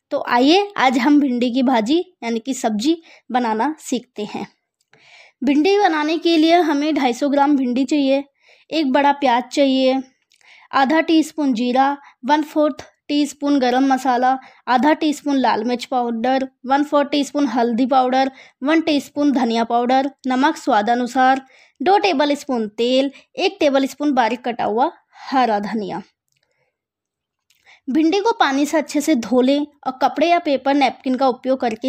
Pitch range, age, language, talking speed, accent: 250-295 Hz, 20-39, English, 120 wpm, Indian